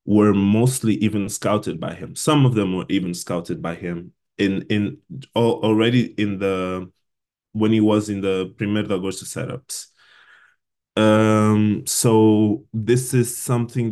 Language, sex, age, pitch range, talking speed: English, male, 20-39, 100-120 Hz, 140 wpm